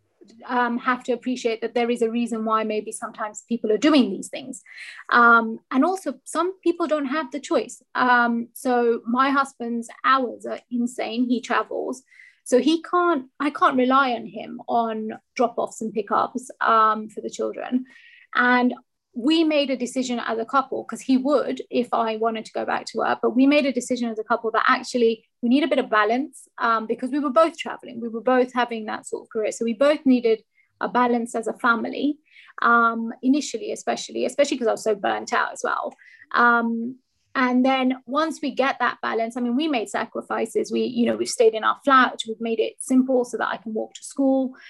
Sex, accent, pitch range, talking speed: female, British, 230-270 Hz, 205 wpm